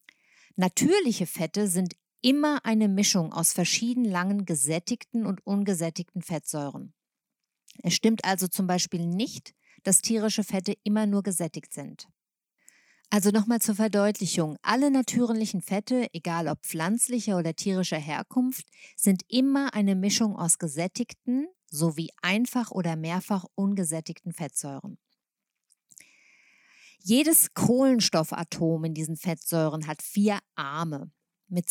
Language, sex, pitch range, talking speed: German, female, 170-225 Hz, 115 wpm